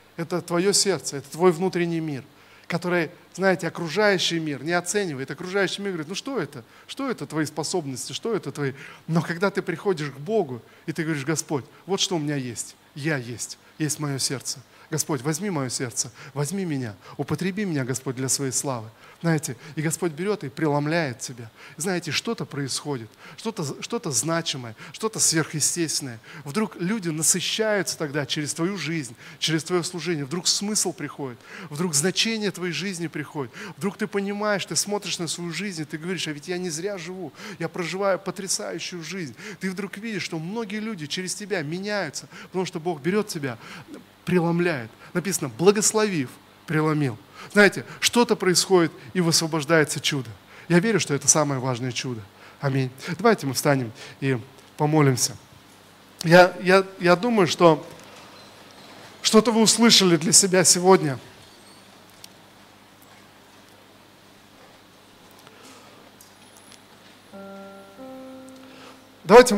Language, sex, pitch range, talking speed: Russian, male, 140-190 Hz, 140 wpm